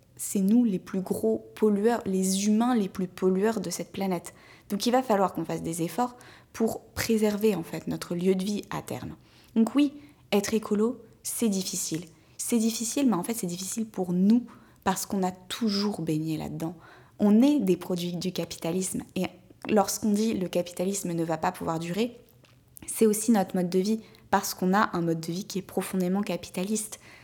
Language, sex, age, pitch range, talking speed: French, female, 20-39, 185-225 Hz, 190 wpm